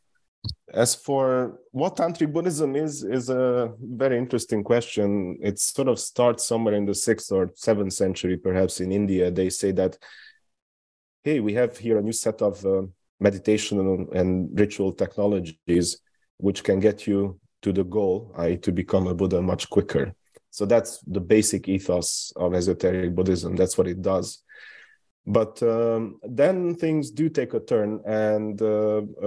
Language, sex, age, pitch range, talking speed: English, male, 30-49, 90-105 Hz, 160 wpm